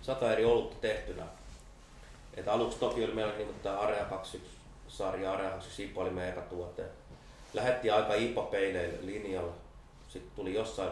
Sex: male